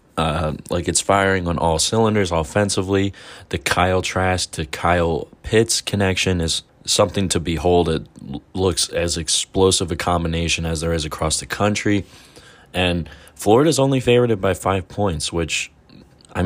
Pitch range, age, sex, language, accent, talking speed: 80-95 Hz, 20-39, male, English, American, 150 wpm